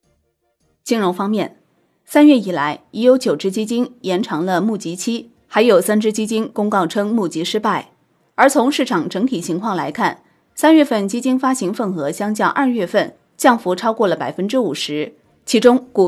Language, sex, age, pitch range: Chinese, female, 20-39, 190-255 Hz